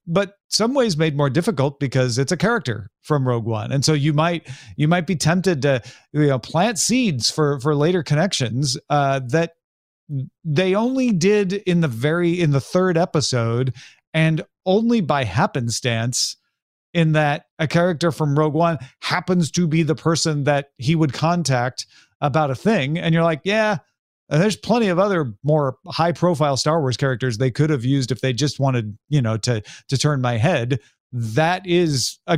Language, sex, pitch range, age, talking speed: English, male, 135-180 Hz, 40-59, 180 wpm